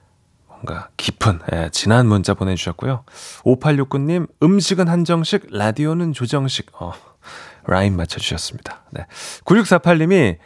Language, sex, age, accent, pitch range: Korean, male, 30-49, native, 105-165 Hz